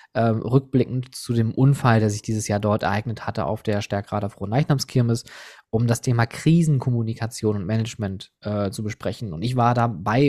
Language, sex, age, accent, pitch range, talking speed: German, male, 20-39, German, 115-135 Hz, 170 wpm